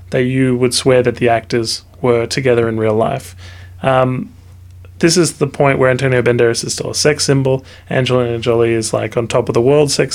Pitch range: 95-135 Hz